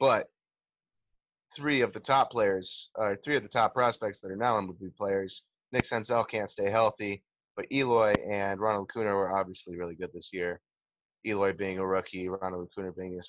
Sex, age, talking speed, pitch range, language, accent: male, 20-39, 180 wpm, 100-125 Hz, English, American